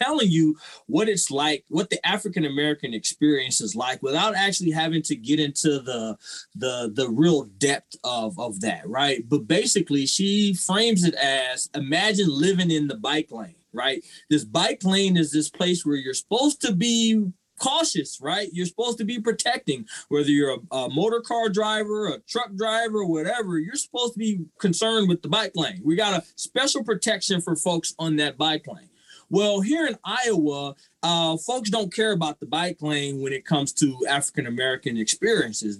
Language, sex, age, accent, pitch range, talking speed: English, male, 20-39, American, 150-210 Hz, 180 wpm